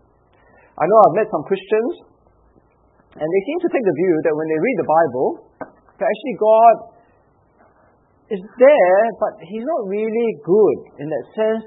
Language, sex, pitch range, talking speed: English, male, 160-240 Hz, 165 wpm